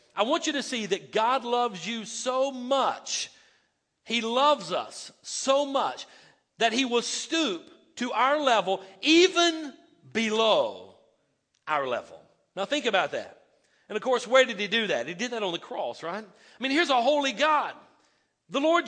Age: 50-69